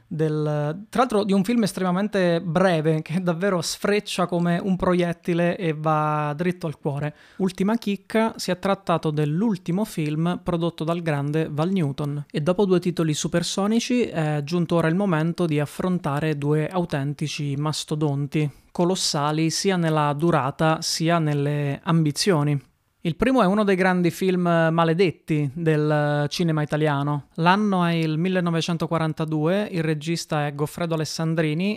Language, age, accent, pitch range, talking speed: Italian, 20-39, native, 155-185 Hz, 140 wpm